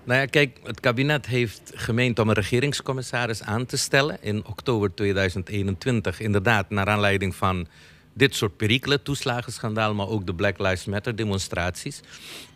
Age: 50-69